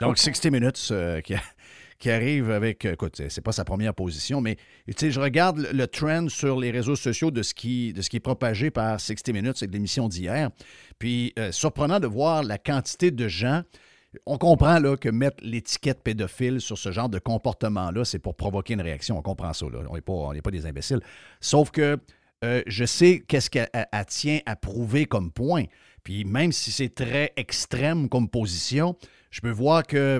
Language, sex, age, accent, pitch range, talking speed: French, male, 50-69, Canadian, 110-145 Hz, 200 wpm